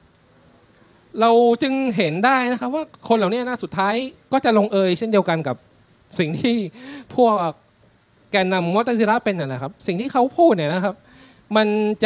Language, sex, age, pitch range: Thai, male, 20-39, 150-215 Hz